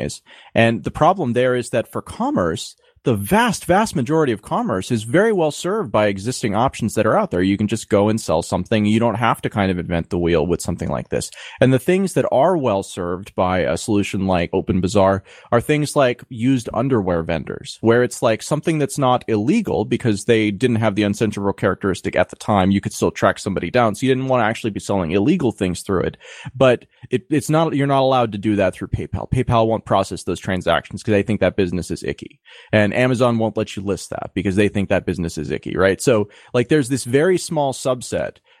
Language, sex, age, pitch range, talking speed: English, male, 30-49, 100-135 Hz, 225 wpm